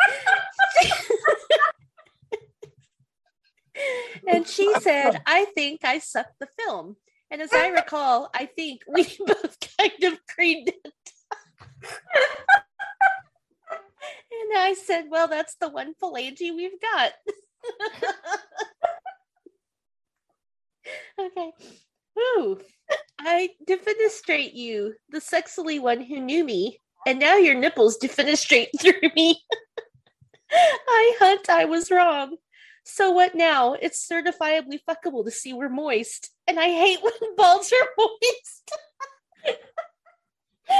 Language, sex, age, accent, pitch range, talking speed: English, female, 30-49, American, 315-405 Hz, 105 wpm